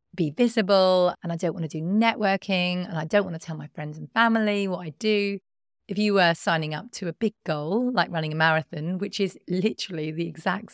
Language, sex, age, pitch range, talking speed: English, female, 30-49, 160-210 Hz, 225 wpm